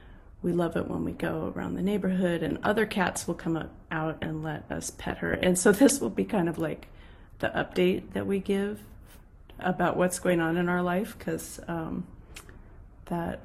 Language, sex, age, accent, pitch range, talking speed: English, female, 30-49, American, 165-205 Hz, 195 wpm